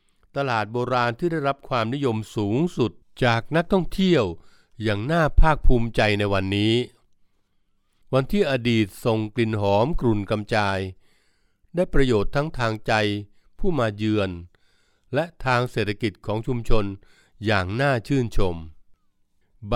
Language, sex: Thai, male